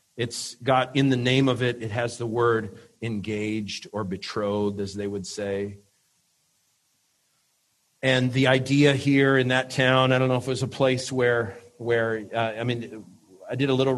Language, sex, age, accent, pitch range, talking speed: English, male, 40-59, American, 110-130 Hz, 180 wpm